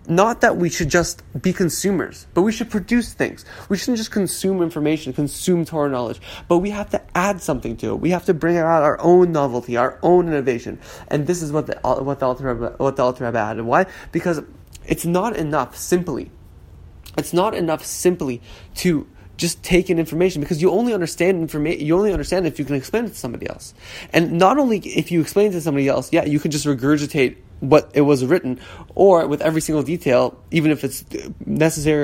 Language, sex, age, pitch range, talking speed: English, male, 20-39, 140-180 Hz, 200 wpm